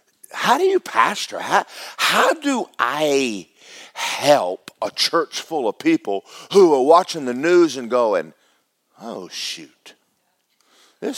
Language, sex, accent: English, male, American